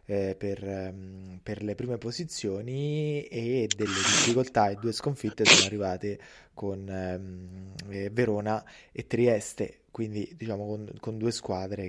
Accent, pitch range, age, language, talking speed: native, 100-120 Hz, 20-39, Italian, 120 wpm